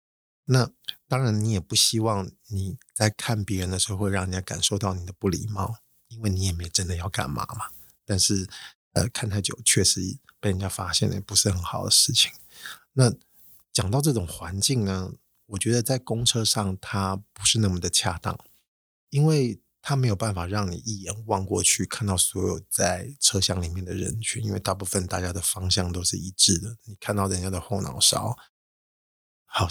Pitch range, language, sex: 95-110 Hz, Chinese, male